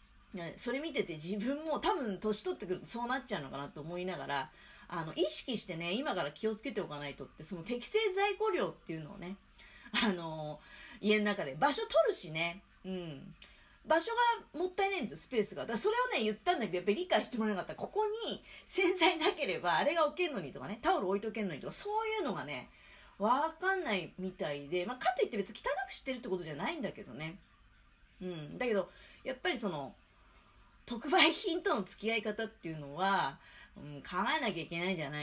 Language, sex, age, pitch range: Japanese, female, 40-59, 180-290 Hz